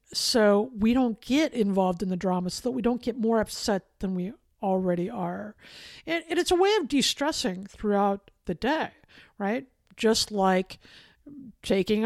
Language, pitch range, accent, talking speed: English, 195-245 Hz, American, 165 wpm